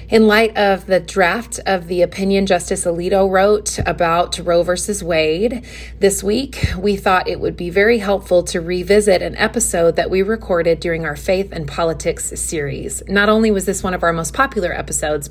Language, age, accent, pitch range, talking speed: English, 30-49, American, 170-200 Hz, 185 wpm